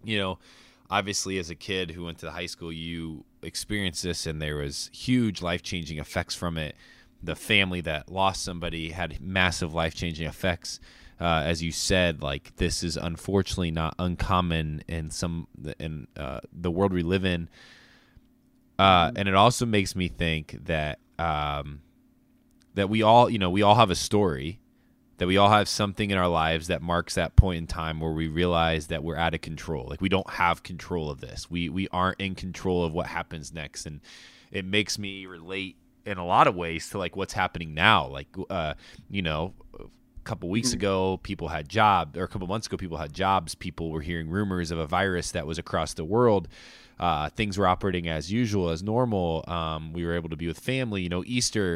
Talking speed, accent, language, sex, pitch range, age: 205 wpm, American, English, male, 85-100 Hz, 20-39